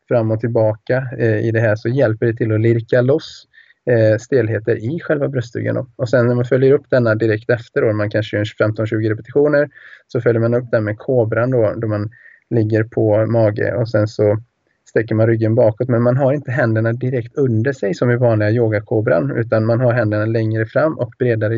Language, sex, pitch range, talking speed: Swedish, male, 105-120 Hz, 200 wpm